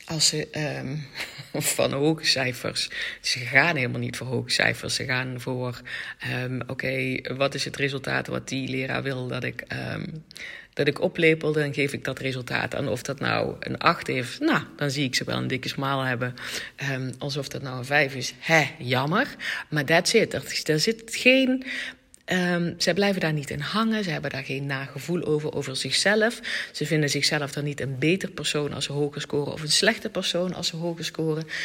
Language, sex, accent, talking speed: Dutch, female, Dutch, 200 wpm